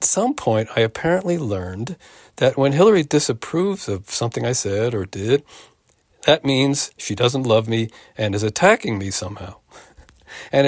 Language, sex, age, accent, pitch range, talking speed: English, male, 50-69, American, 110-155 Hz, 150 wpm